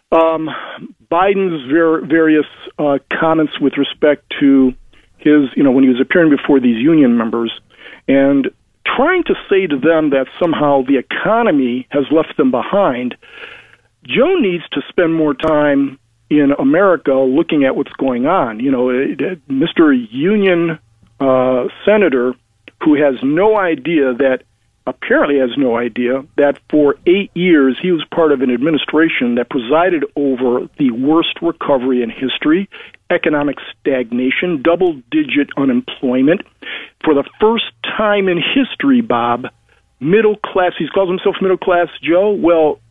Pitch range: 130-200 Hz